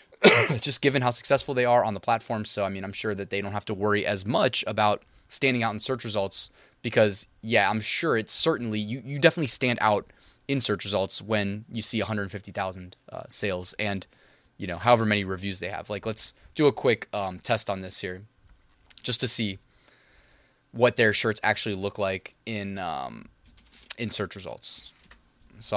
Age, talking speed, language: 20-39, 190 wpm, English